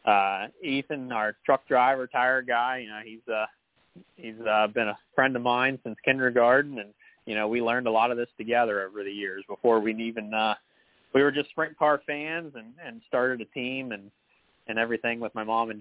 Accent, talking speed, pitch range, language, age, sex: American, 210 wpm, 110-125 Hz, English, 20-39, male